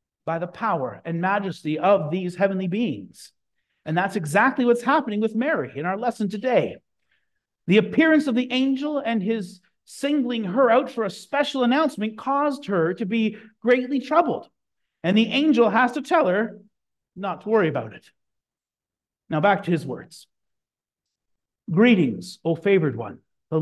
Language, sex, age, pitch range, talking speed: English, male, 40-59, 180-250 Hz, 160 wpm